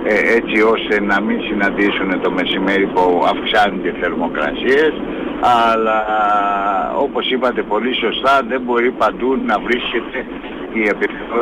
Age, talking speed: 60-79, 120 wpm